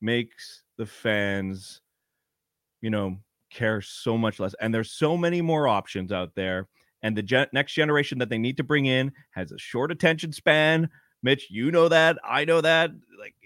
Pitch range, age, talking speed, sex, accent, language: 105-150 Hz, 30-49, 185 wpm, male, American, English